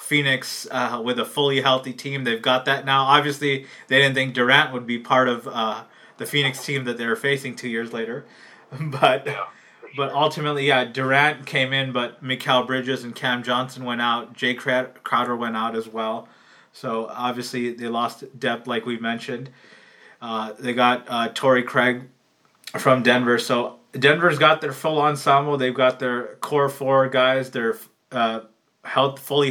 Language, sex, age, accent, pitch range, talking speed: English, male, 20-39, American, 120-135 Hz, 170 wpm